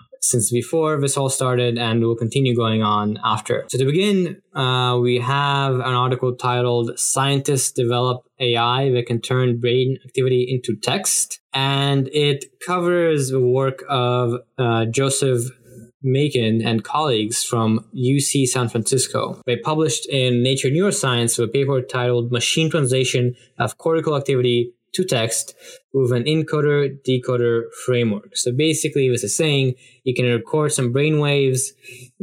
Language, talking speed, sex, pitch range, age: English, 145 wpm, male, 120-135 Hz, 10-29